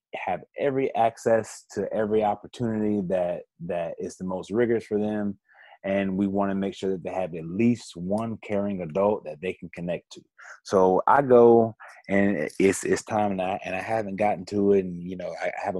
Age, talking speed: 30-49, 205 wpm